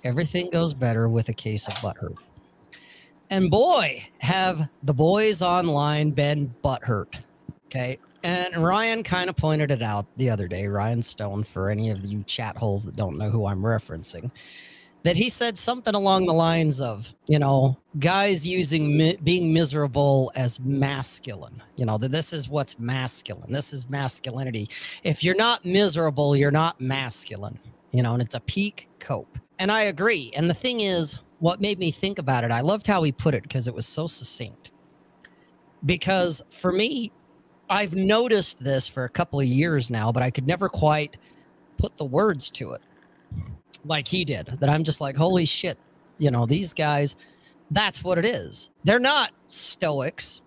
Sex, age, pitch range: male, 40-59, 120-175 Hz